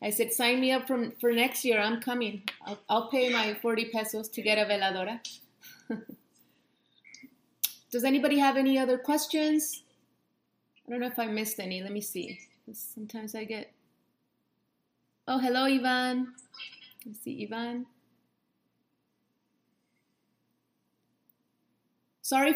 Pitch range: 210-245 Hz